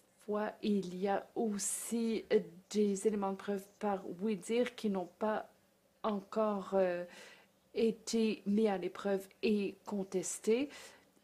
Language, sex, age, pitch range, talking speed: English, female, 50-69, 190-220 Hz, 105 wpm